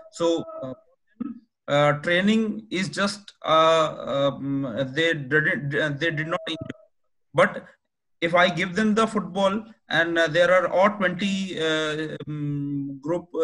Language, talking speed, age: English, 130 wpm, 30-49